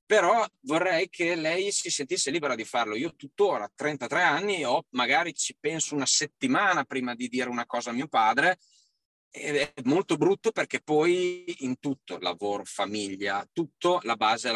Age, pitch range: 30-49, 110-160 Hz